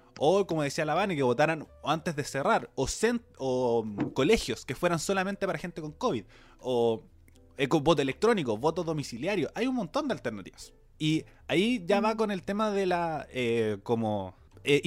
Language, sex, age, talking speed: Spanish, male, 20-39, 180 wpm